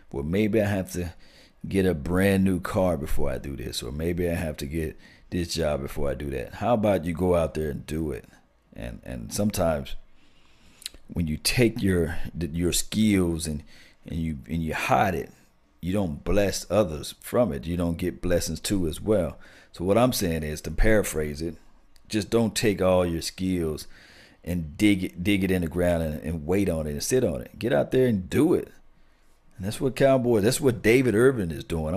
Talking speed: 205 wpm